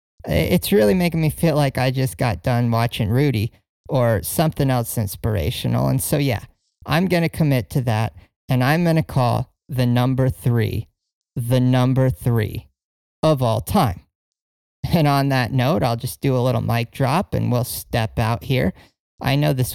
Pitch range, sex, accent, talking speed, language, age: 110-140 Hz, male, American, 175 wpm, English, 40-59